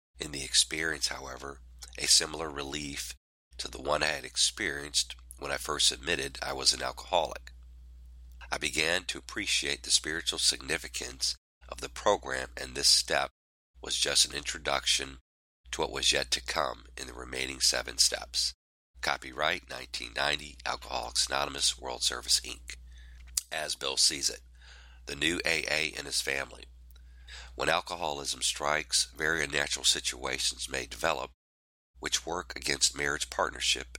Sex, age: male, 40-59